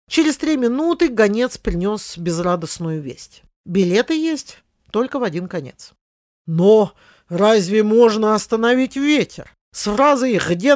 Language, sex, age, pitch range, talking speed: Russian, male, 50-69, 170-235 Hz, 115 wpm